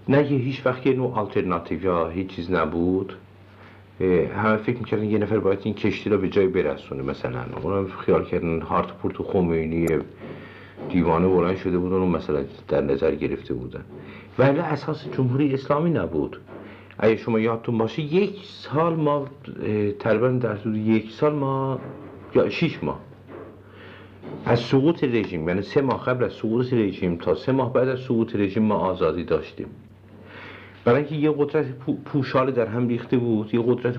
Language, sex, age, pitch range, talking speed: Persian, male, 60-79, 100-135 Hz, 155 wpm